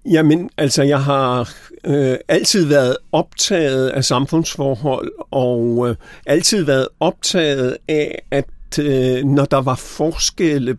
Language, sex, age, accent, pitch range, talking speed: English, male, 50-69, Danish, 130-155 Hz, 120 wpm